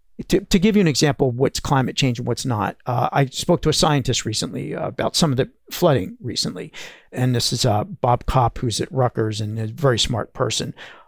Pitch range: 120-150 Hz